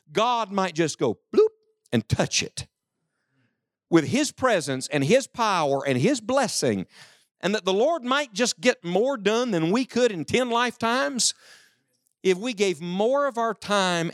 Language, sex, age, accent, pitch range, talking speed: English, male, 50-69, American, 130-200 Hz, 165 wpm